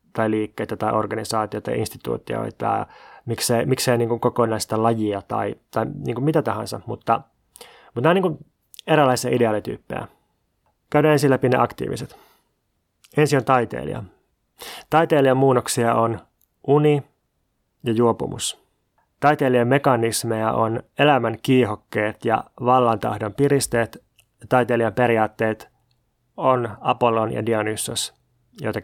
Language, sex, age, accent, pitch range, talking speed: Finnish, male, 30-49, native, 115-135 Hz, 110 wpm